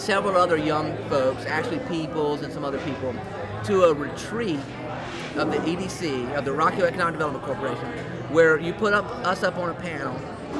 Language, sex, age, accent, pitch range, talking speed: English, male, 30-49, American, 135-175 Hz, 175 wpm